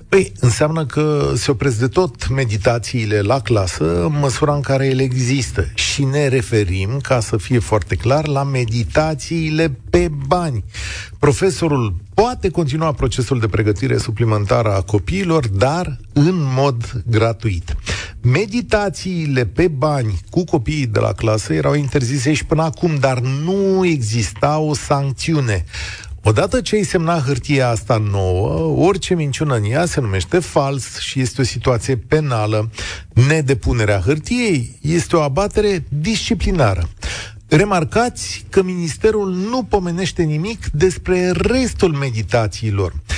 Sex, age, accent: male, 40-59, native